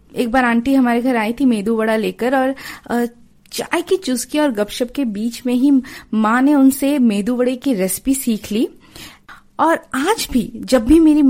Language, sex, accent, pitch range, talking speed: Hindi, female, native, 230-290 Hz, 185 wpm